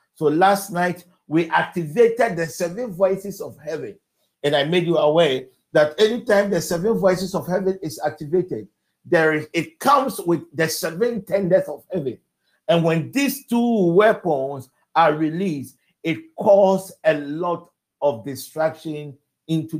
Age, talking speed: 50-69, 145 wpm